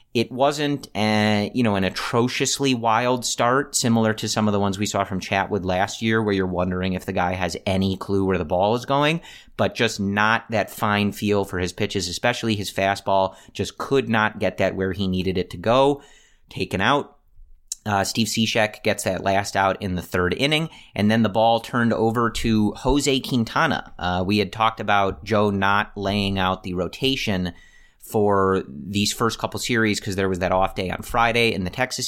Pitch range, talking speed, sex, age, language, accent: 95-115 Hz, 200 wpm, male, 30-49, English, American